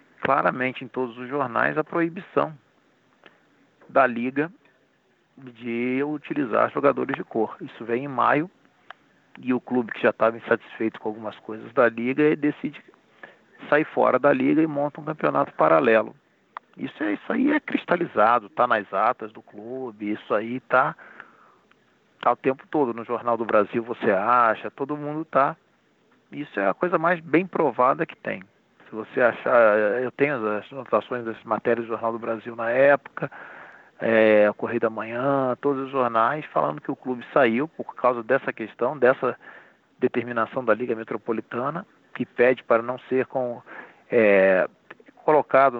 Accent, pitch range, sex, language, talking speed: Brazilian, 115-140 Hz, male, Portuguese, 150 wpm